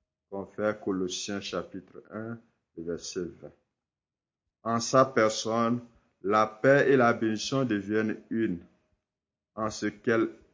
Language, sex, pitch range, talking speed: French, male, 100-125 Hz, 110 wpm